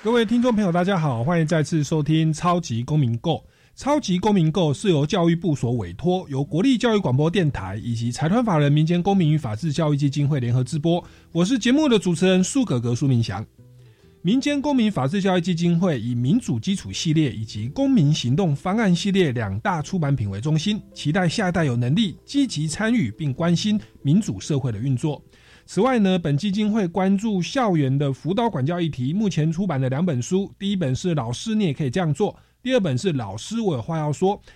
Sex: male